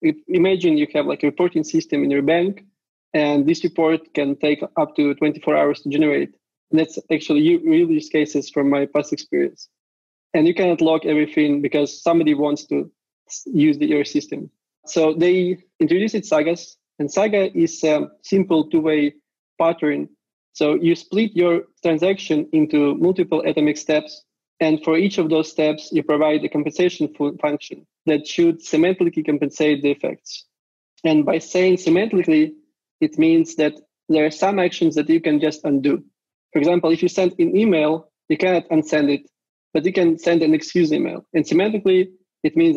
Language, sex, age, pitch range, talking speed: English, male, 20-39, 150-185 Hz, 165 wpm